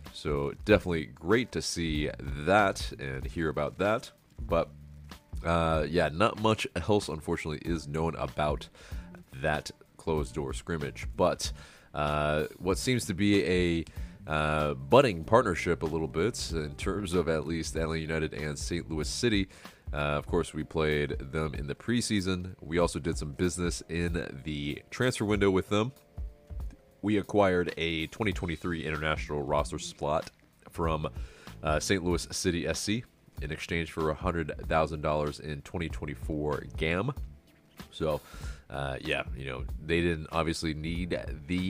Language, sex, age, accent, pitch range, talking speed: English, male, 30-49, American, 75-90 Hz, 140 wpm